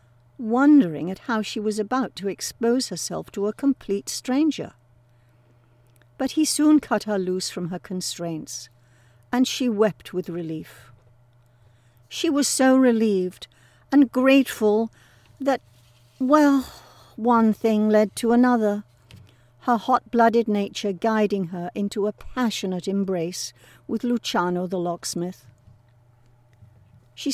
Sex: female